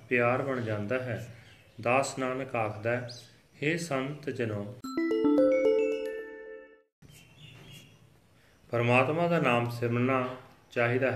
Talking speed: 75 wpm